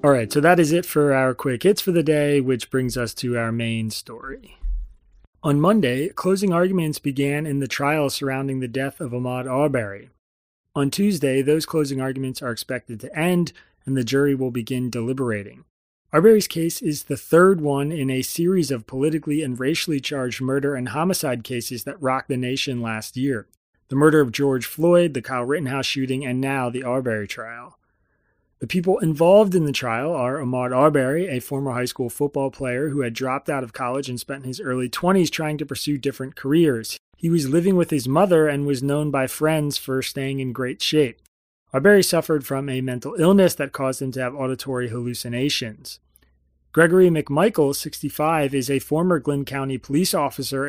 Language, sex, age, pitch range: English, male, 30-49, 125-150 Hz